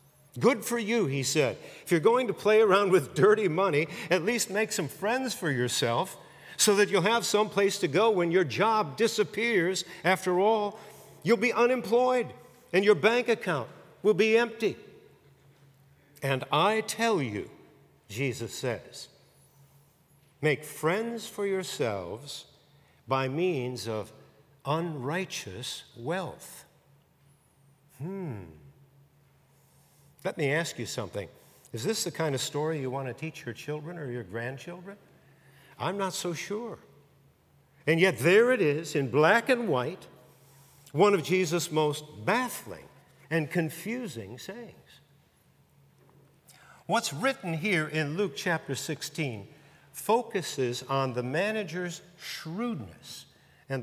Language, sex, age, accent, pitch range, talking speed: English, male, 50-69, American, 140-205 Hz, 130 wpm